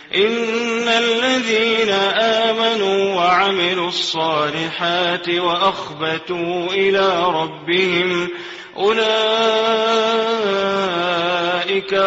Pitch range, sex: 160-195 Hz, male